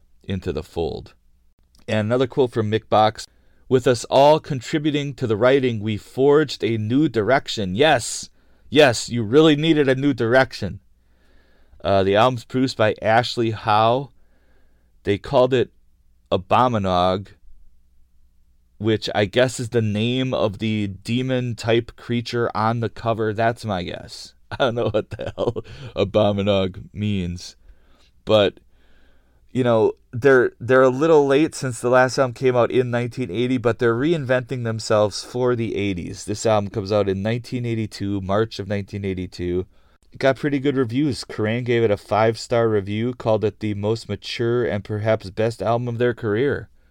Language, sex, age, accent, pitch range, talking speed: English, male, 30-49, American, 95-125 Hz, 155 wpm